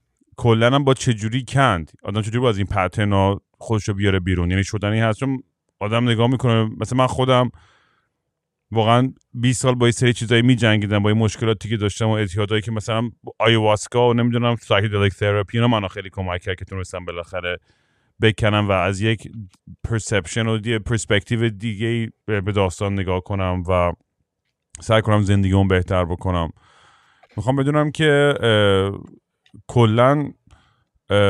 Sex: male